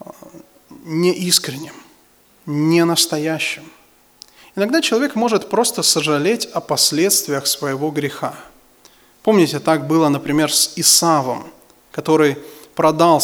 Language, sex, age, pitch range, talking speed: English, male, 20-39, 145-190 Hz, 90 wpm